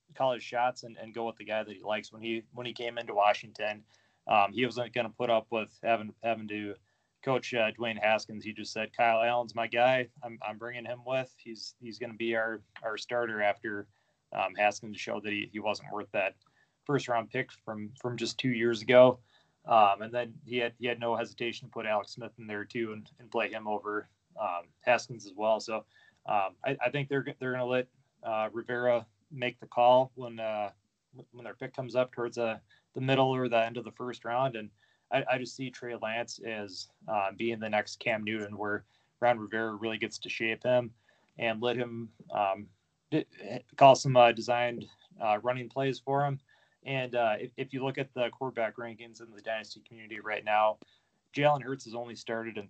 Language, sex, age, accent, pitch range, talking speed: English, male, 20-39, American, 110-125 Hz, 215 wpm